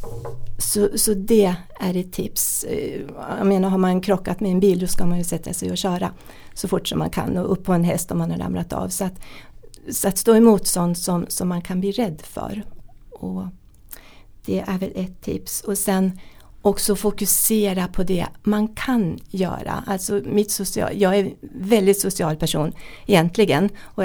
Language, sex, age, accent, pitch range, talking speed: English, female, 40-59, Swedish, 175-205 Hz, 190 wpm